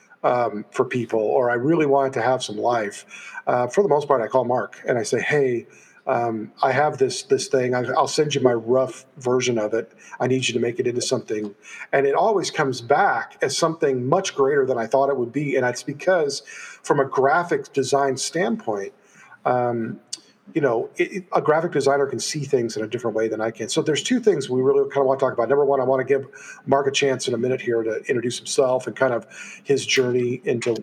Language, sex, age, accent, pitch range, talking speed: English, male, 40-59, American, 125-160 Hz, 230 wpm